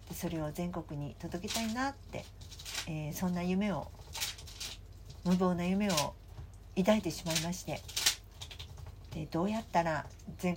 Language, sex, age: Japanese, female, 60-79